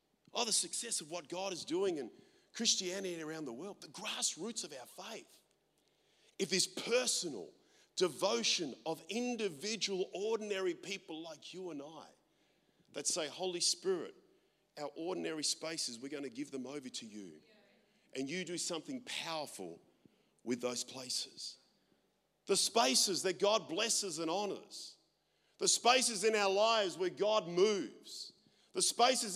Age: 40-59